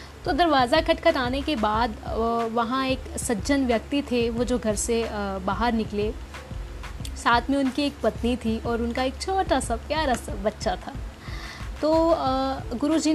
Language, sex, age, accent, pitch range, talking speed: Hindi, female, 20-39, native, 225-275 Hz, 150 wpm